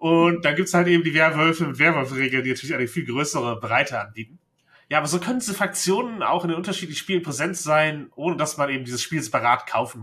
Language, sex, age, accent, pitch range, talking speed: German, male, 30-49, German, 125-160 Hz, 225 wpm